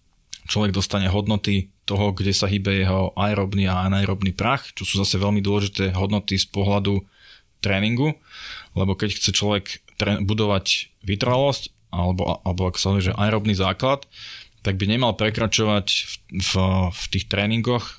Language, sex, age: Slovak, male, 20-39